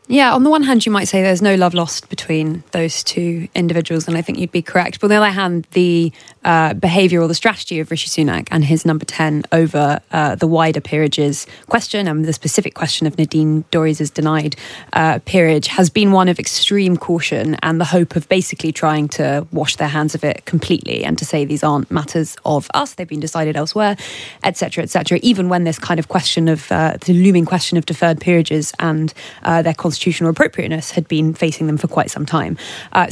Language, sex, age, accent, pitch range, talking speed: English, female, 20-39, British, 160-185 Hz, 215 wpm